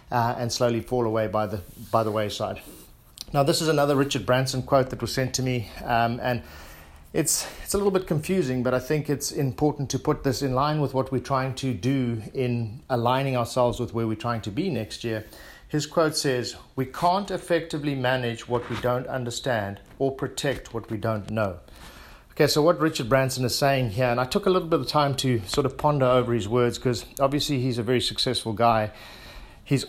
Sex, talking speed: male, 210 wpm